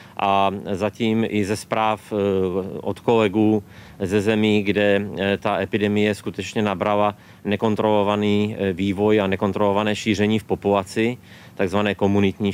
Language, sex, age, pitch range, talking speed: Czech, male, 30-49, 100-115 Hz, 110 wpm